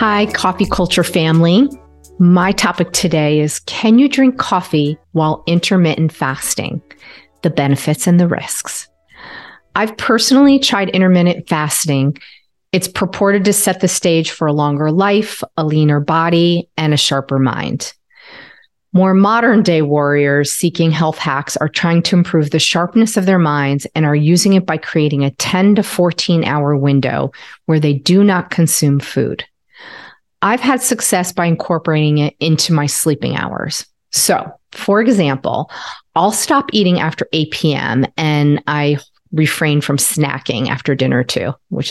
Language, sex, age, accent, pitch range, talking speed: English, female, 40-59, American, 150-190 Hz, 150 wpm